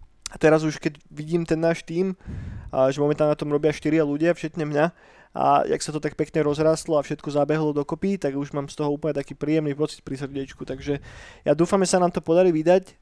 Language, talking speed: Slovak, 215 wpm